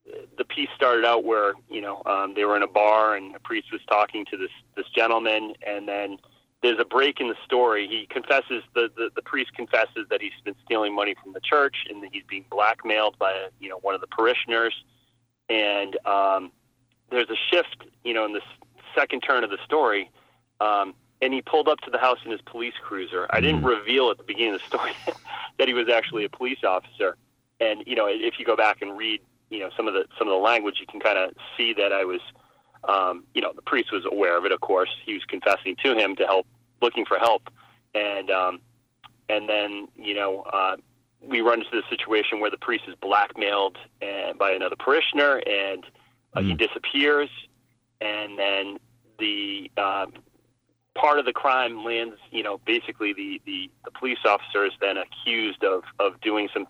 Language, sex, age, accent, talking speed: English, male, 30-49, American, 205 wpm